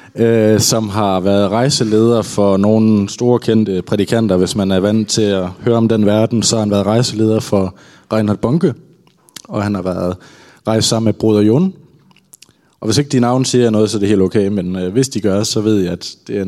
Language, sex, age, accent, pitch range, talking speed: Danish, male, 20-39, native, 105-130 Hz, 210 wpm